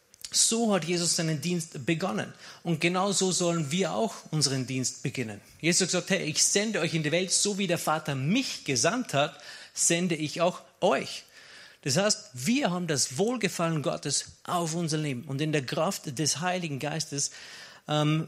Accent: German